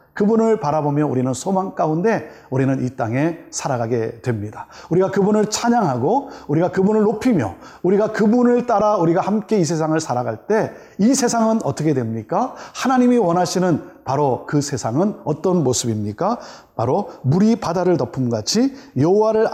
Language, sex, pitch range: Korean, male, 135-220 Hz